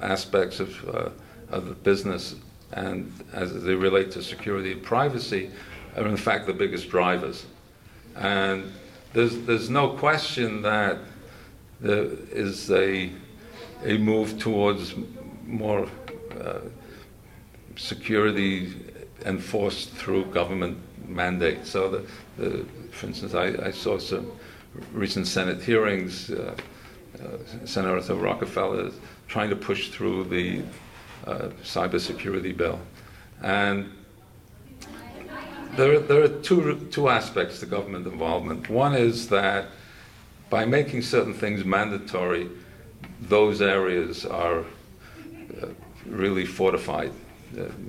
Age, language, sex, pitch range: 50-69, English, male, 95-115 Hz